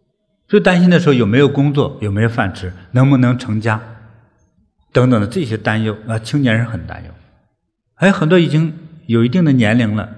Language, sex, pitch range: Chinese, male, 105-145 Hz